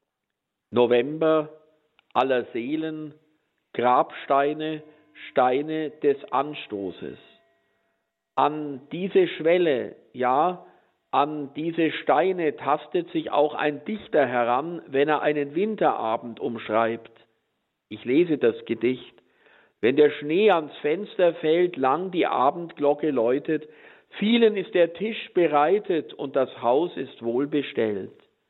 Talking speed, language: 105 wpm, German